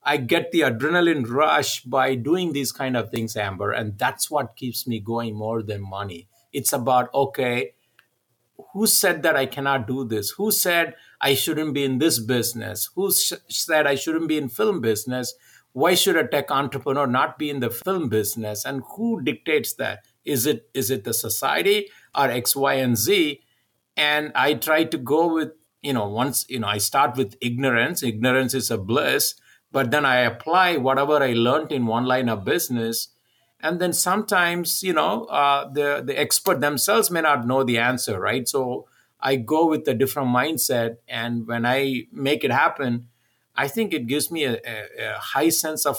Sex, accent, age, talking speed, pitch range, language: male, Indian, 50-69, 190 wpm, 115-150 Hz, English